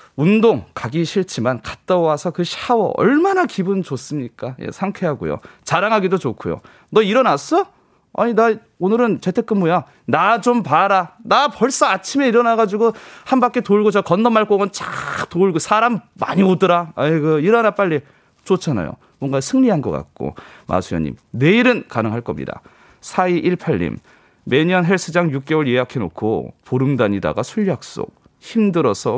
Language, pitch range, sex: Korean, 140-215 Hz, male